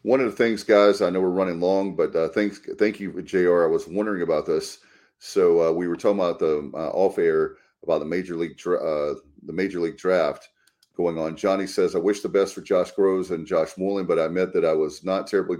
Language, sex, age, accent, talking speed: English, male, 40-59, American, 235 wpm